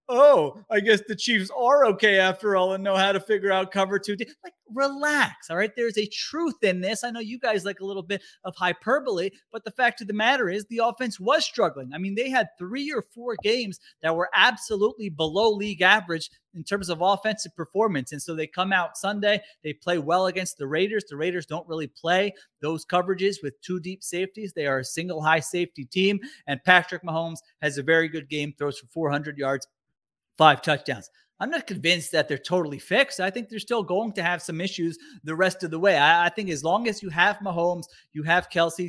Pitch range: 160-210 Hz